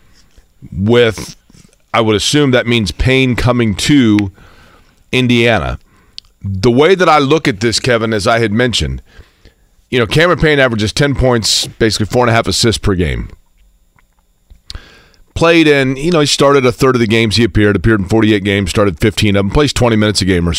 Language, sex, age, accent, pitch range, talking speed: English, male, 40-59, American, 100-135 Hz, 185 wpm